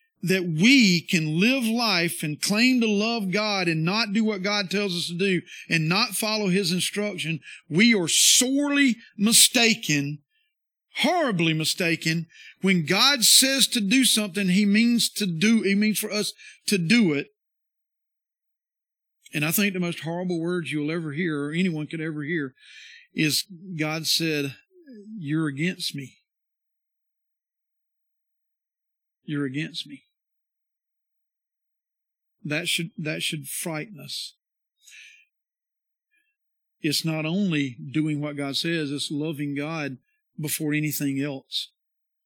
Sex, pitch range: male, 160-230 Hz